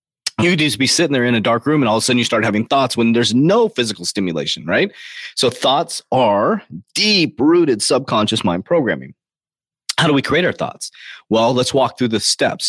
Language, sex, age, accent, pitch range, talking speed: English, male, 30-49, American, 105-150 Hz, 215 wpm